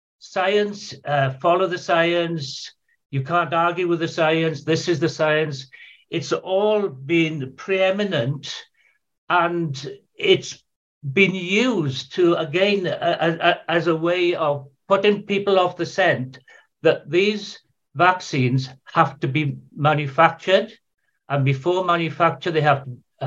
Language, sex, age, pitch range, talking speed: English, male, 60-79, 150-190 Hz, 125 wpm